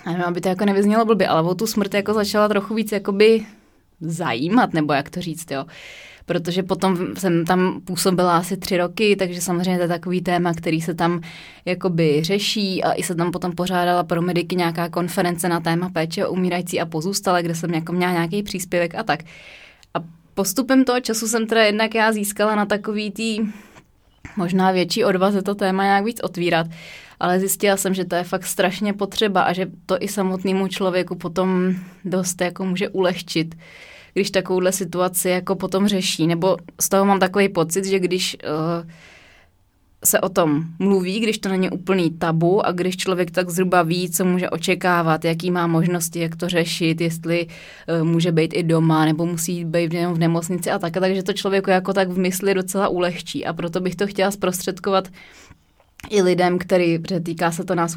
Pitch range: 170-195 Hz